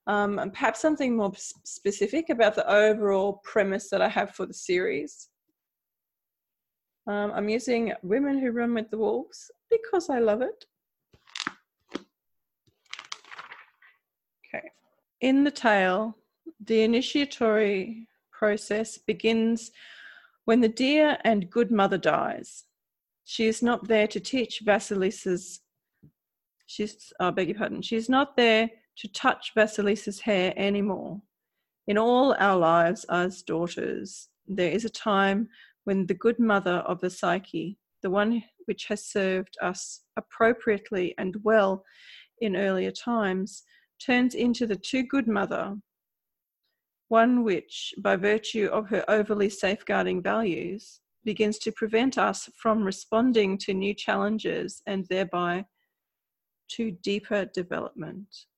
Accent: Australian